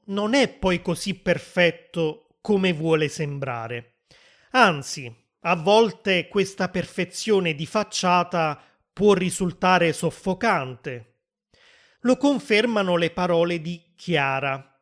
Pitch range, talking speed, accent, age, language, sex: 155-195 Hz, 95 wpm, native, 30-49, Italian, male